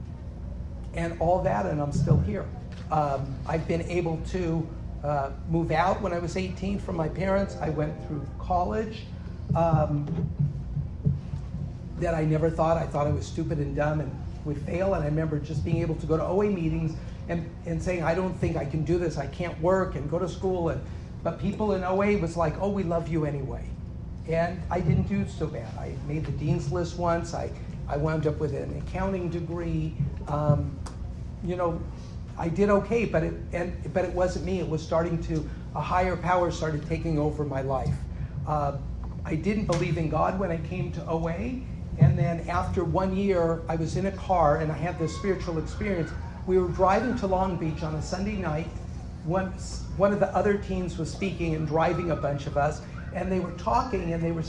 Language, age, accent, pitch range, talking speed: English, 40-59, American, 150-180 Hz, 205 wpm